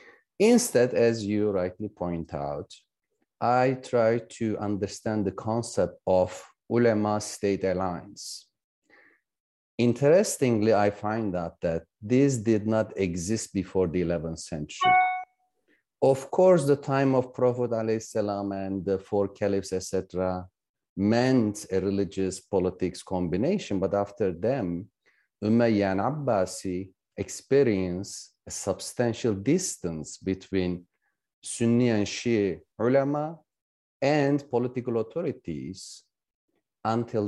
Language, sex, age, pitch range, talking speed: Turkish, male, 40-59, 95-125 Hz, 105 wpm